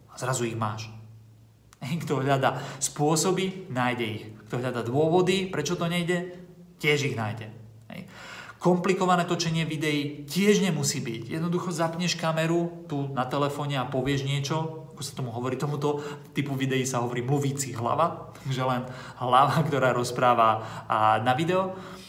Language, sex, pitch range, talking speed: Slovak, male, 120-155 Hz, 140 wpm